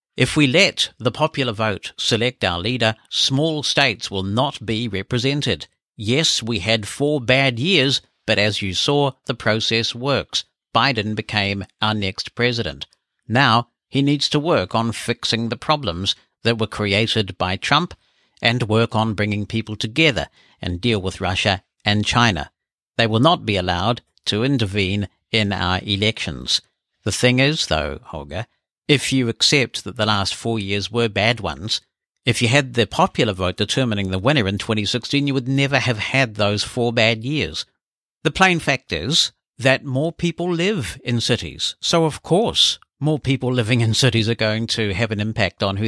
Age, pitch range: 60-79, 105-135 Hz